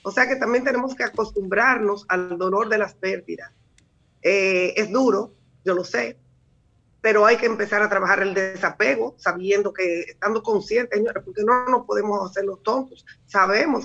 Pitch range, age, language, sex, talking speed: 185-220 Hz, 30-49, Spanish, female, 165 wpm